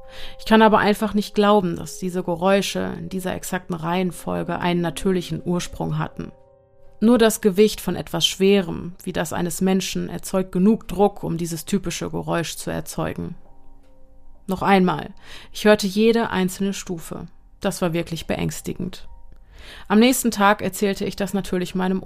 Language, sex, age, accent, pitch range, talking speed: German, female, 30-49, German, 165-195 Hz, 150 wpm